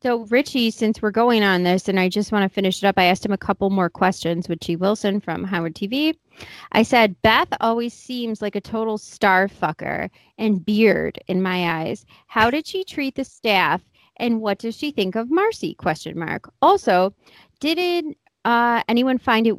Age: 30-49